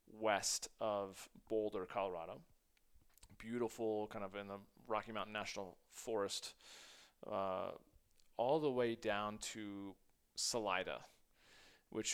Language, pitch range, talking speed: English, 105-135 Hz, 105 wpm